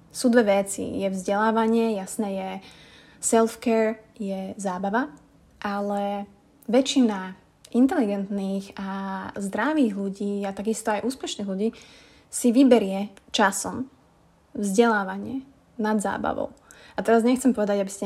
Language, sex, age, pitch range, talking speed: Slovak, female, 20-39, 200-230 Hz, 110 wpm